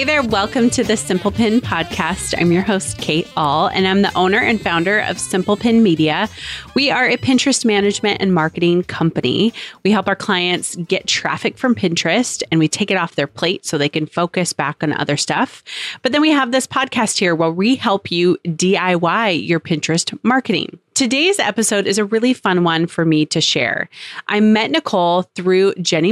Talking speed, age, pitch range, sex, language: 195 wpm, 30-49, 165-215 Hz, female, English